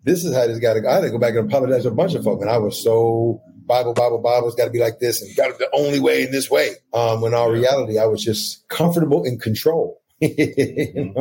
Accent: American